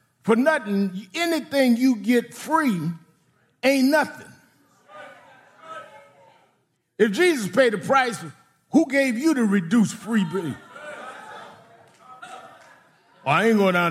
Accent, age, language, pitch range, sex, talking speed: American, 50-69, English, 200-275 Hz, male, 110 wpm